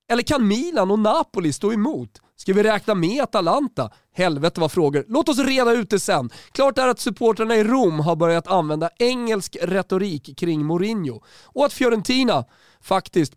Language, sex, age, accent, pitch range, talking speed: Swedish, male, 30-49, native, 165-235 Hz, 170 wpm